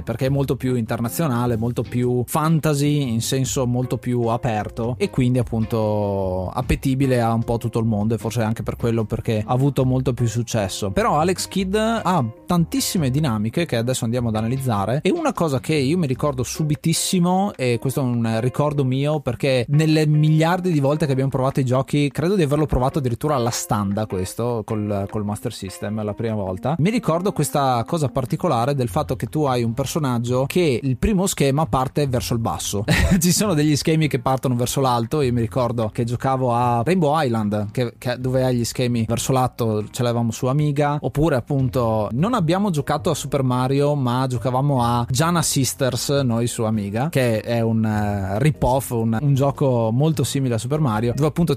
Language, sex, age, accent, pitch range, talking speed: Italian, male, 20-39, native, 115-150 Hz, 185 wpm